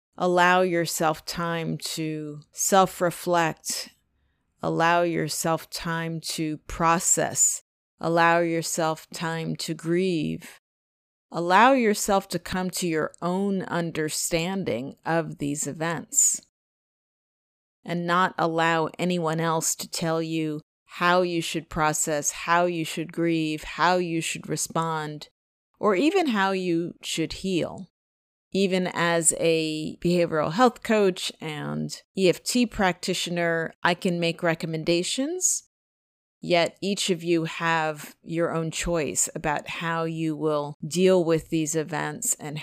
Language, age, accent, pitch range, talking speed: English, 30-49, American, 155-175 Hz, 115 wpm